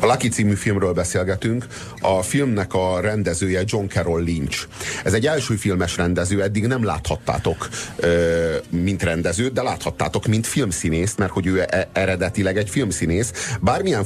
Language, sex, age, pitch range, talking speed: Hungarian, male, 40-59, 85-105 Hz, 140 wpm